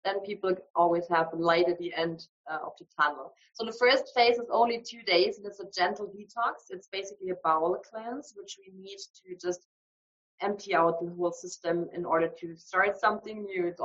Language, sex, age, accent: English, female, 20-39, German